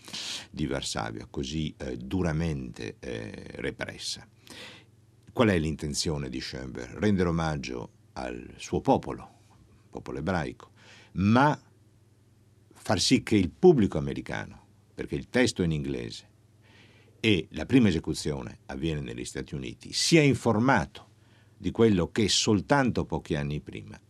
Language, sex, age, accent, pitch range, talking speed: Italian, male, 60-79, native, 80-110 Hz, 120 wpm